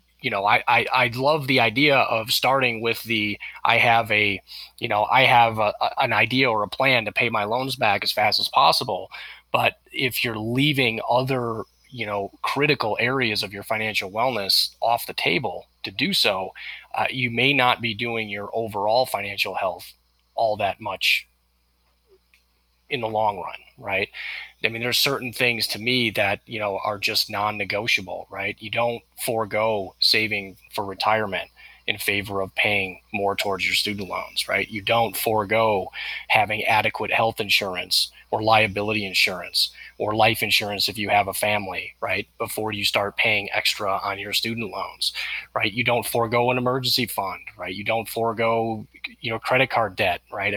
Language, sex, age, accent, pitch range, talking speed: English, male, 20-39, American, 100-120 Hz, 175 wpm